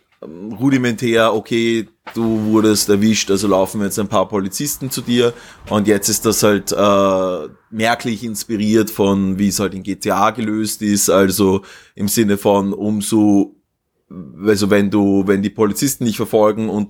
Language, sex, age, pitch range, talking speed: German, male, 20-39, 100-110 Hz, 155 wpm